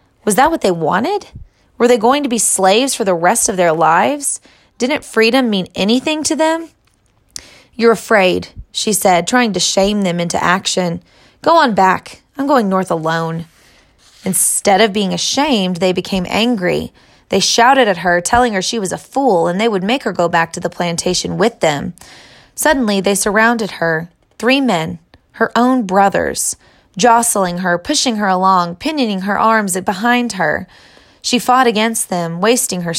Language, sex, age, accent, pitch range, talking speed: English, female, 20-39, American, 180-240 Hz, 170 wpm